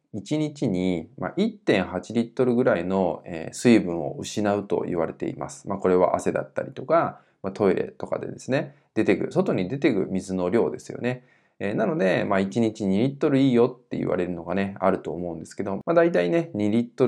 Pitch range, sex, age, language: 90-130 Hz, male, 20-39, Japanese